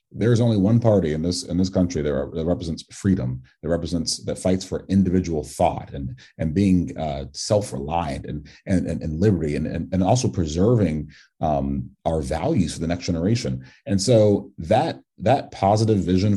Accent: American